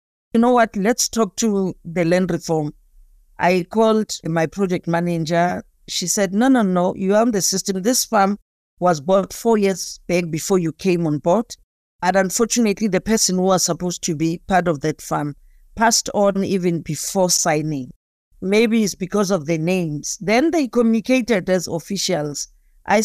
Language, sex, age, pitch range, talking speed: English, female, 50-69, 170-215 Hz, 170 wpm